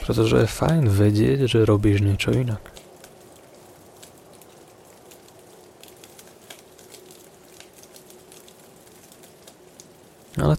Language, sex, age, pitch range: Slovak, male, 30-49, 105-130 Hz